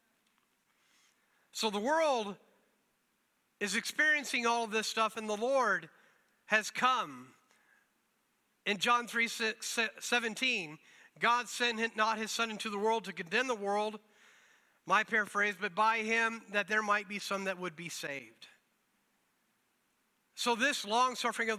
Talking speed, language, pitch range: 130 wpm, English, 200-230 Hz